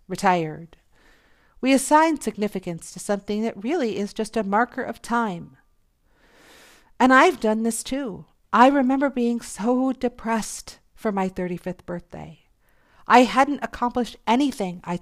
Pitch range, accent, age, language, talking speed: 190-255 Hz, American, 50-69, English, 130 wpm